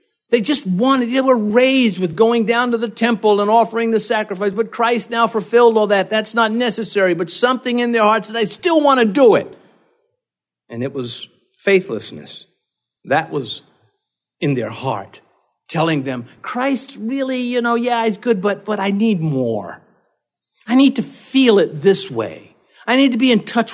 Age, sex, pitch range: 50-69, male, 155-240 Hz